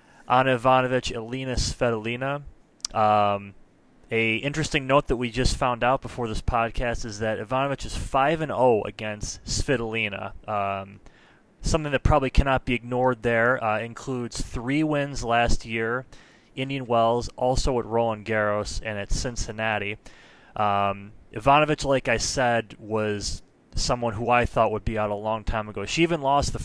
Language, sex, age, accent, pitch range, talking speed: English, male, 20-39, American, 105-125 Hz, 150 wpm